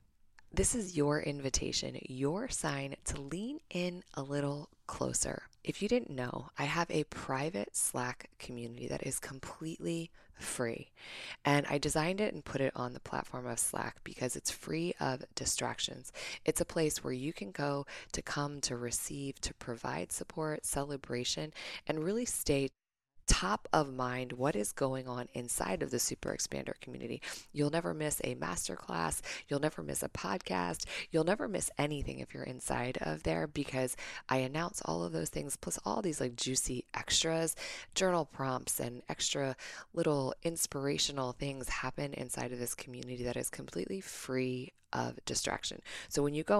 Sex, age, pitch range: female, 20-39, 125-155 Hz